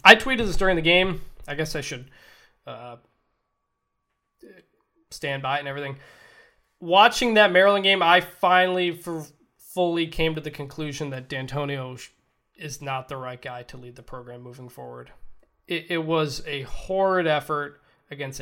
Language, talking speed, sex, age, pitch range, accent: English, 155 wpm, male, 20-39, 130-170 Hz, American